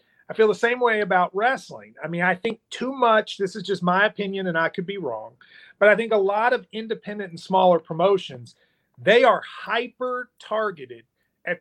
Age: 40-59